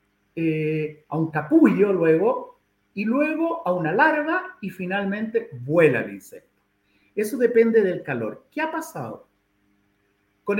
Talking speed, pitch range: 130 wpm, 150-245 Hz